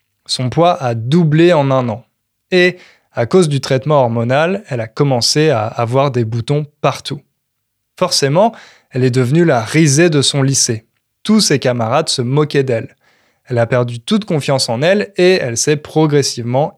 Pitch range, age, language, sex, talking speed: 120-160 Hz, 20-39, French, male, 170 wpm